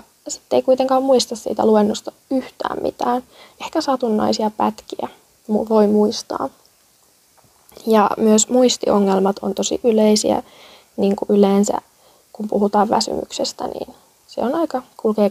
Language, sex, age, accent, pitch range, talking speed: Finnish, female, 20-39, native, 210-250 Hz, 115 wpm